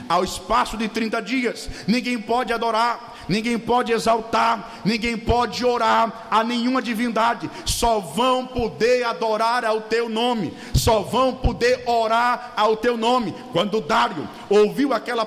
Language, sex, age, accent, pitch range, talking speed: Portuguese, male, 50-69, Brazilian, 225-255 Hz, 140 wpm